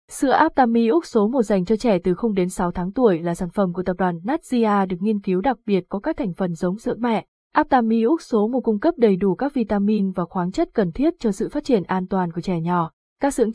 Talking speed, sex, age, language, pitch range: 260 wpm, female, 20-39, Vietnamese, 190-245 Hz